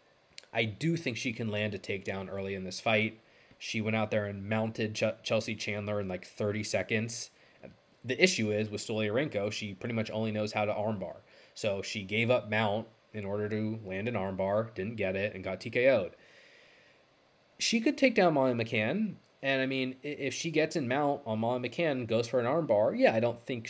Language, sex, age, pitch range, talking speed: English, male, 20-39, 105-130 Hz, 205 wpm